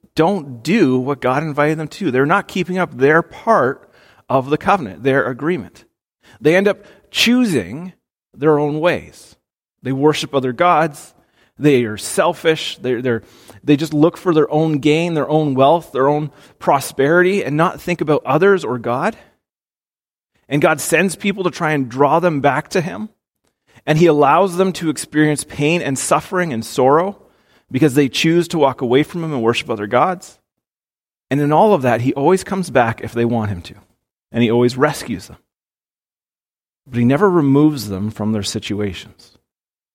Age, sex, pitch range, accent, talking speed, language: 30-49, male, 125-170 Hz, American, 175 wpm, English